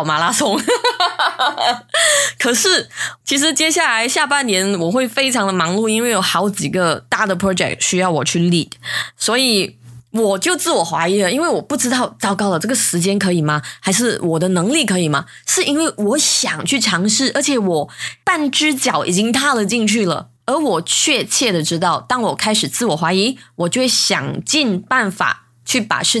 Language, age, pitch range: Chinese, 20-39, 175-260 Hz